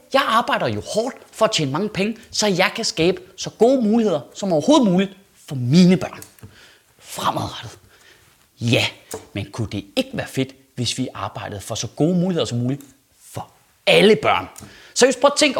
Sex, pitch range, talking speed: male, 160-245 Hz, 180 wpm